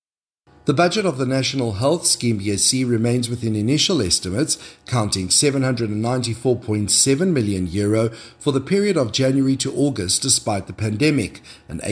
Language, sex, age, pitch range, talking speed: English, male, 50-69, 105-140 Hz, 130 wpm